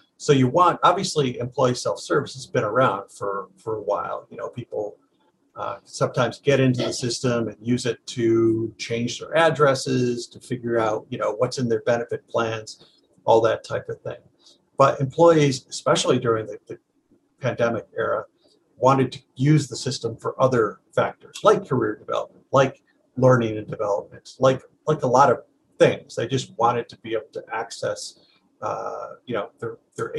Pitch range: 120-195 Hz